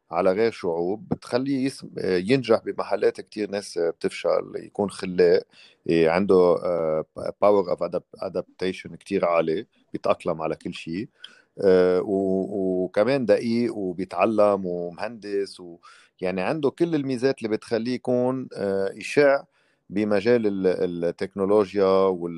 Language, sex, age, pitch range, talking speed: Arabic, male, 40-59, 95-135 Hz, 100 wpm